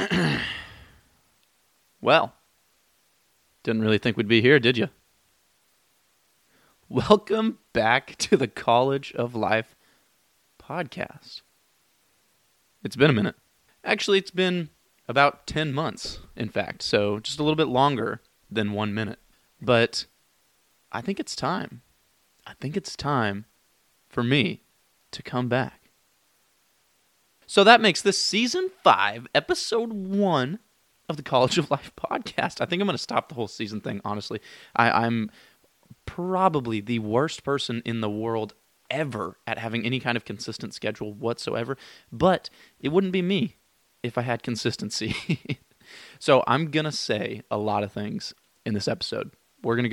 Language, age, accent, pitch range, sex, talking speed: English, 30-49, American, 115-160 Hz, male, 140 wpm